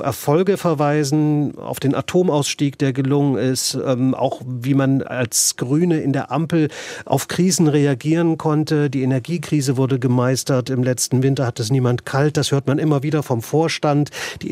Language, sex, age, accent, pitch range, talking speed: German, male, 40-59, German, 130-150 Hz, 165 wpm